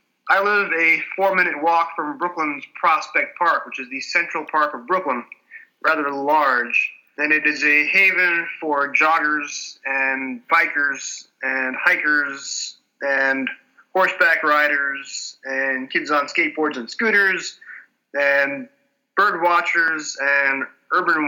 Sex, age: male, 20-39